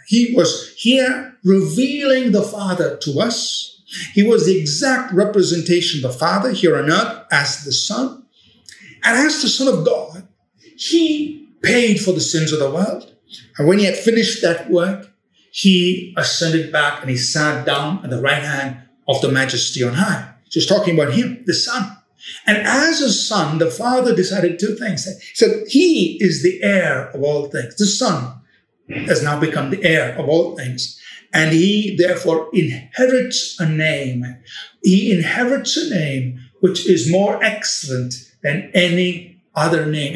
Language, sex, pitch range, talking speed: English, male, 155-210 Hz, 165 wpm